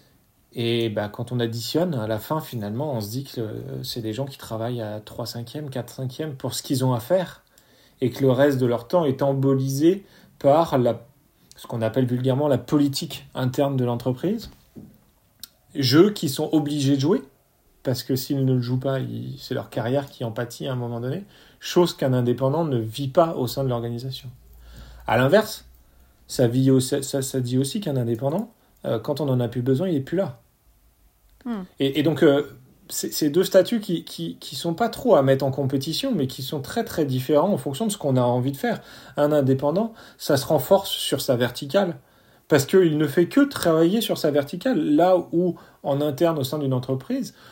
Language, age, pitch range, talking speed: French, 40-59, 125-155 Hz, 205 wpm